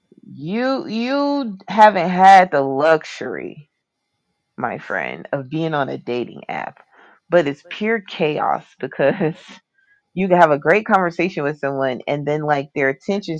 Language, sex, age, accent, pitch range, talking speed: English, female, 30-49, American, 140-185 Hz, 145 wpm